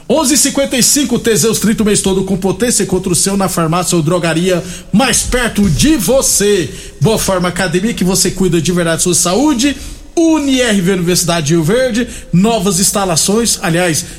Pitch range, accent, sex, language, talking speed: 180-225 Hz, Brazilian, male, Portuguese, 160 wpm